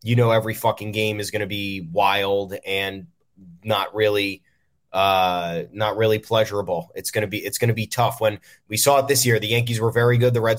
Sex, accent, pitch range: male, American, 110-125 Hz